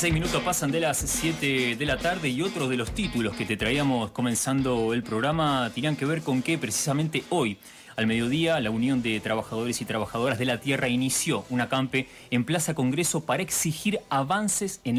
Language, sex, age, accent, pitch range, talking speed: Spanish, male, 30-49, Argentinian, 120-160 Hz, 190 wpm